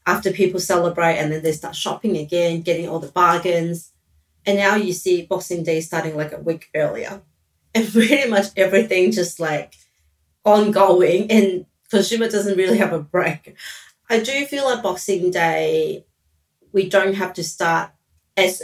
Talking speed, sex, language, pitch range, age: 160 wpm, female, English, 160-190 Hz, 30-49